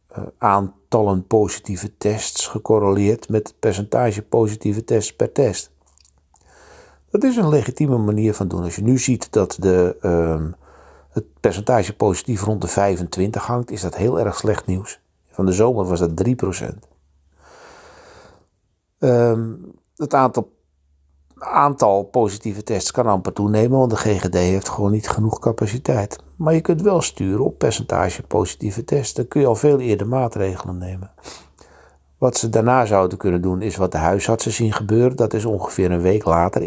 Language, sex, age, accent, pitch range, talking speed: Dutch, male, 50-69, Dutch, 95-120 Hz, 155 wpm